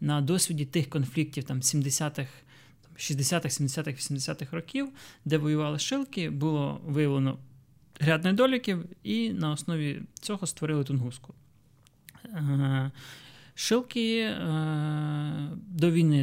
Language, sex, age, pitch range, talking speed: Ukrainian, male, 20-39, 135-160 Hz, 95 wpm